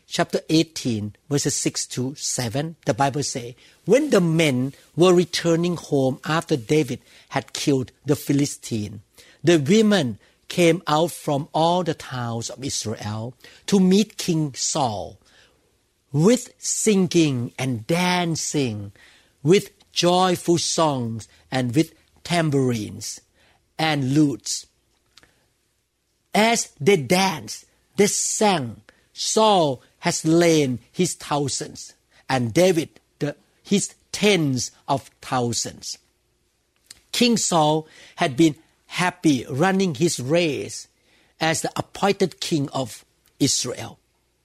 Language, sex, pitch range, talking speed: English, male, 130-180 Hz, 105 wpm